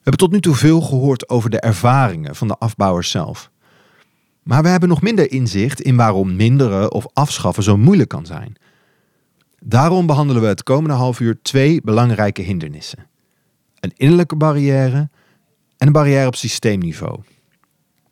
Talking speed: 155 wpm